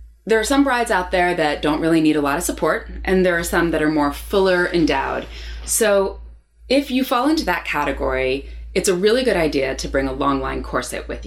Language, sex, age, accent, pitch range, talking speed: English, female, 20-39, American, 145-200 Hz, 225 wpm